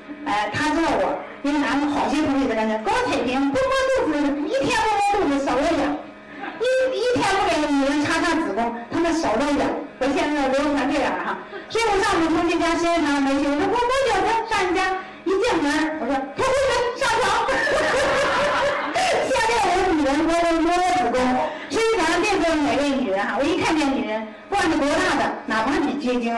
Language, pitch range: Chinese, 270-365 Hz